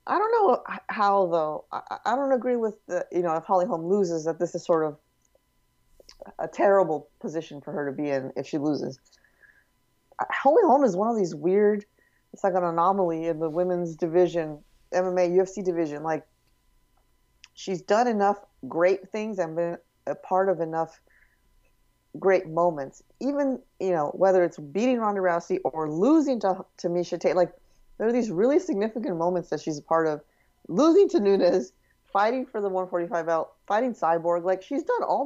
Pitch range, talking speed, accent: 165-200 Hz, 180 wpm, American